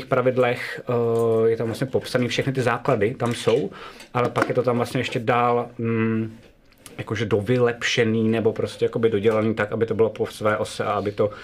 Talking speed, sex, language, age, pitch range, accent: 180 wpm, male, Czech, 30-49, 115-140 Hz, native